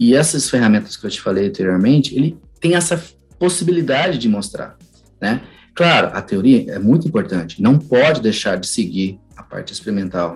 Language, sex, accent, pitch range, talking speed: Portuguese, male, Brazilian, 100-135 Hz, 170 wpm